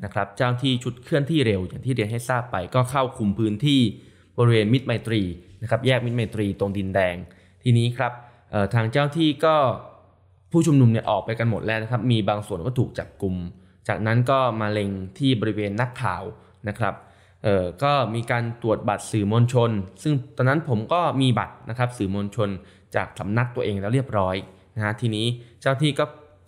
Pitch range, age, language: 105-135 Hz, 10-29, Thai